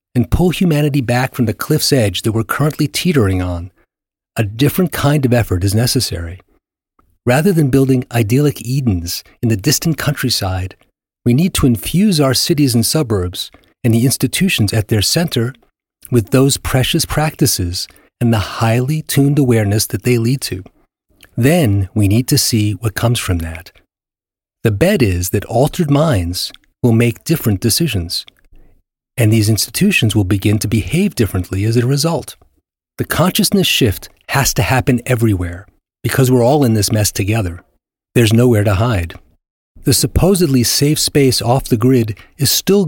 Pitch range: 105-140 Hz